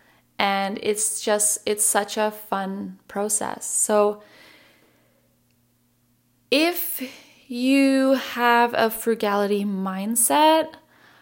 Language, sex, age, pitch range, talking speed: English, female, 10-29, 205-260 Hz, 80 wpm